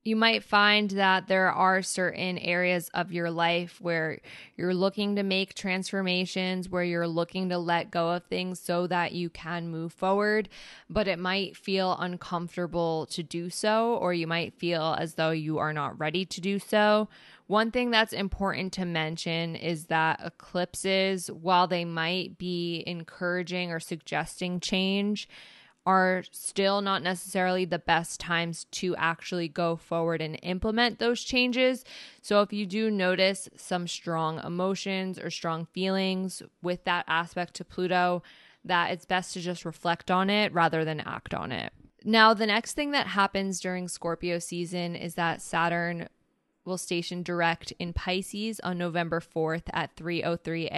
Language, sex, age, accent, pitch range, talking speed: English, female, 10-29, American, 170-195 Hz, 160 wpm